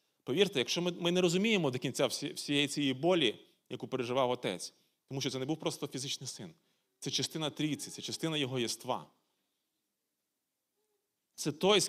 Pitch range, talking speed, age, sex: 120-165 Hz, 160 wpm, 30-49, male